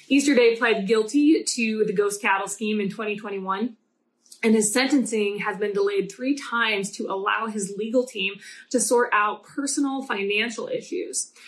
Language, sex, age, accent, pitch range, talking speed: English, female, 20-39, American, 205-265 Hz, 155 wpm